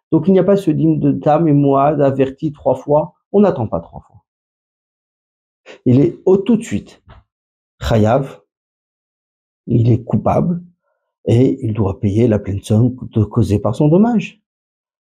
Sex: male